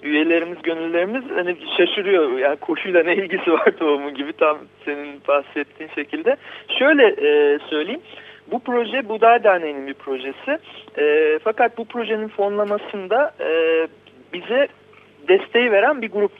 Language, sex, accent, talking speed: Turkish, male, native, 115 wpm